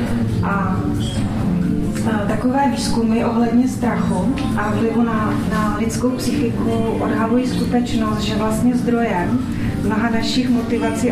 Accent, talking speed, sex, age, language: native, 105 wpm, female, 30-49, Czech